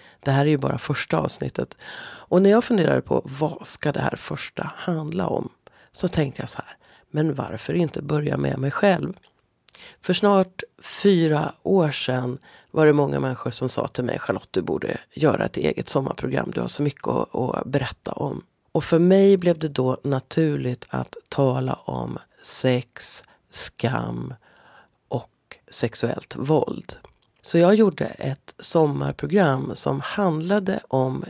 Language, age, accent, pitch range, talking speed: Swedish, 40-59, native, 130-175 Hz, 155 wpm